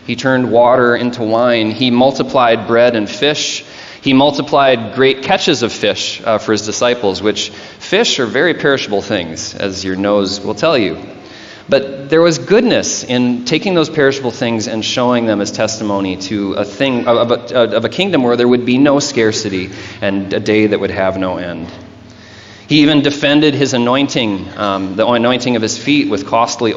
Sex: male